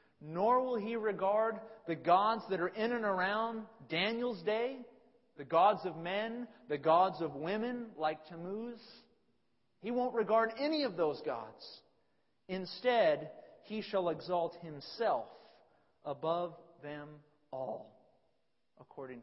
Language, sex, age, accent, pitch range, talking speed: English, male, 40-59, American, 140-210 Hz, 120 wpm